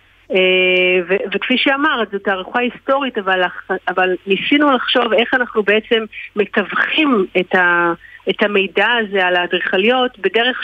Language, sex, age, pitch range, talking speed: Hebrew, female, 40-59, 190-225 Hz, 130 wpm